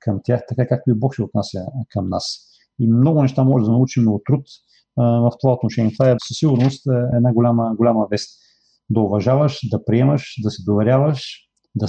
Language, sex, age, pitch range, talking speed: Bulgarian, male, 40-59, 115-135 Hz, 190 wpm